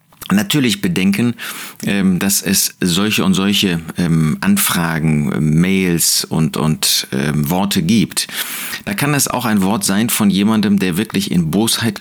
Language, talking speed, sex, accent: German, 130 wpm, male, German